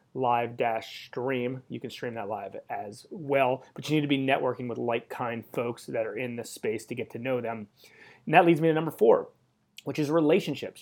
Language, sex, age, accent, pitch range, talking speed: English, male, 30-49, American, 120-140 Hz, 220 wpm